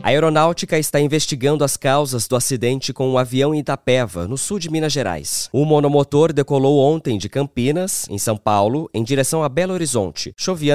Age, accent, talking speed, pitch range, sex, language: 20-39, Brazilian, 185 wpm, 115-145 Hz, male, English